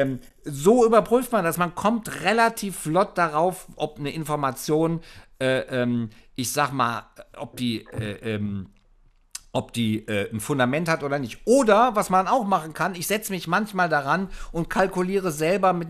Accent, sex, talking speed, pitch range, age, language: German, male, 165 wpm, 120-155 Hz, 50-69, German